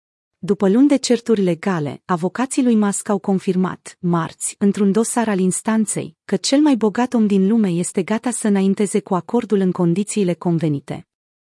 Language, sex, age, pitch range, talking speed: Romanian, female, 30-49, 175-220 Hz, 160 wpm